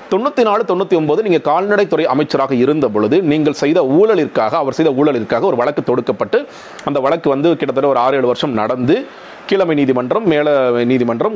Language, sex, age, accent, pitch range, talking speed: Tamil, male, 40-59, native, 135-180 Hz, 160 wpm